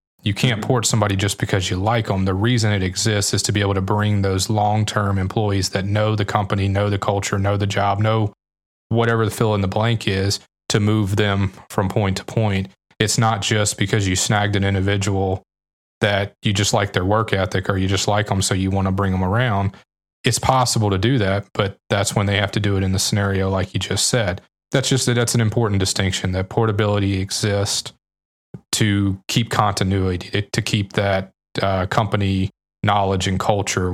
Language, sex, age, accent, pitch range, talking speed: English, male, 20-39, American, 95-110 Hz, 205 wpm